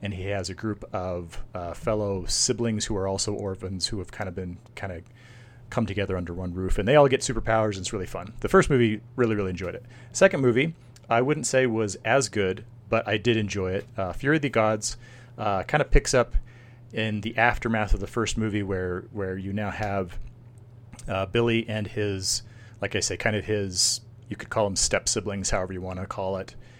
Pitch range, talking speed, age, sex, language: 95-120 Hz, 220 wpm, 30-49, male, English